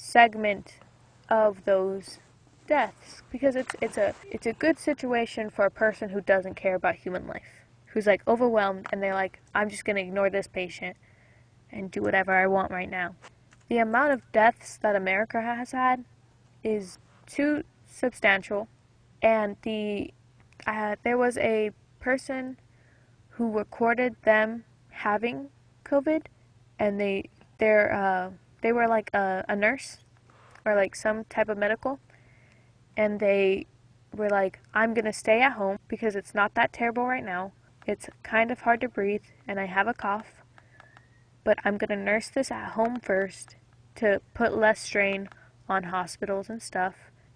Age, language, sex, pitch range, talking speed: 10-29, English, female, 135-225 Hz, 155 wpm